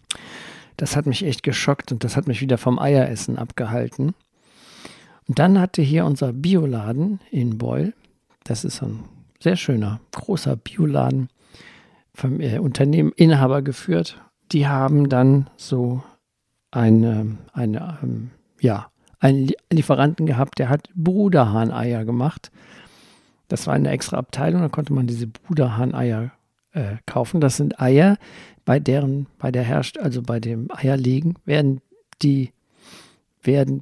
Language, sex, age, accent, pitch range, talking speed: German, male, 50-69, German, 125-155 Hz, 130 wpm